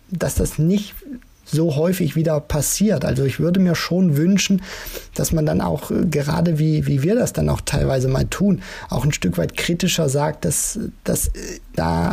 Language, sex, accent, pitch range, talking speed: German, male, German, 145-170 Hz, 180 wpm